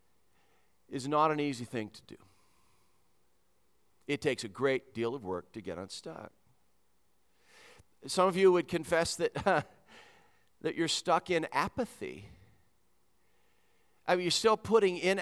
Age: 50-69